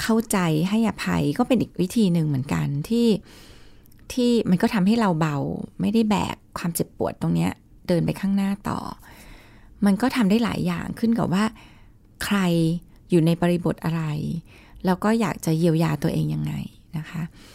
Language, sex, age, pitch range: Thai, female, 20-39, 155-210 Hz